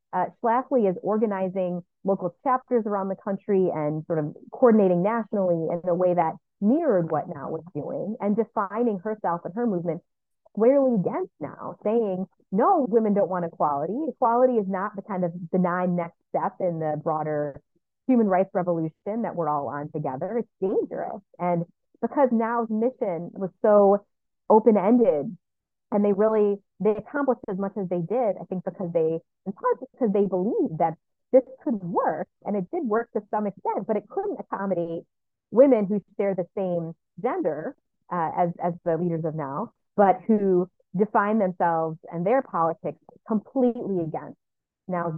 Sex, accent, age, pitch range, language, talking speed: female, American, 30-49, 165-215 Hz, English, 165 wpm